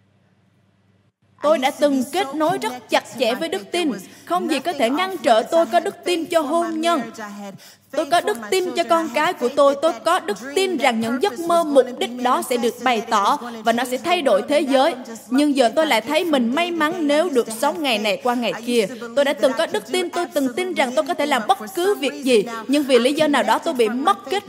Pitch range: 225-320 Hz